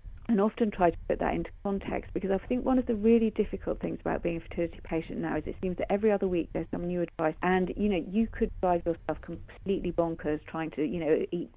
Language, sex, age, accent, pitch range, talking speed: English, female, 40-59, British, 165-200 Hz, 250 wpm